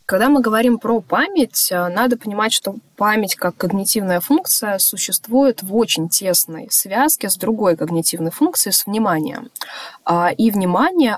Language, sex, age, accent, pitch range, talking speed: Russian, female, 20-39, native, 165-205 Hz, 135 wpm